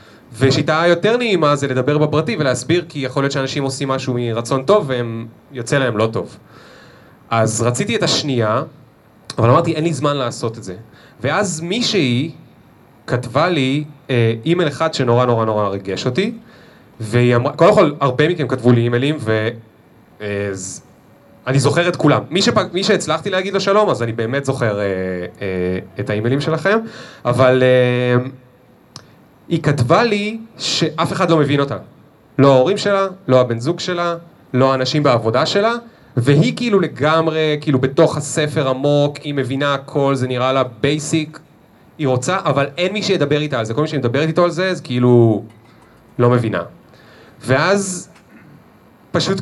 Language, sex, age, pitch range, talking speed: Hebrew, male, 30-49, 125-165 Hz, 160 wpm